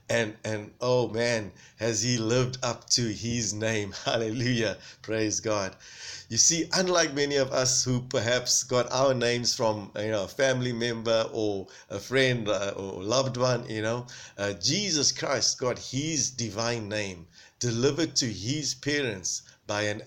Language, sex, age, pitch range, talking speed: English, male, 50-69, 110-135 Hz, 155 wpm